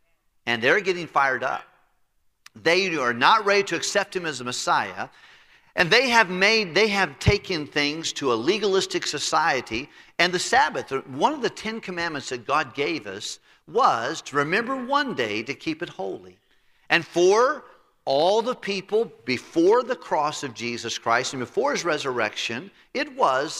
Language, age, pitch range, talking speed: English, 50-69, 135-215 Hz, 165 wpm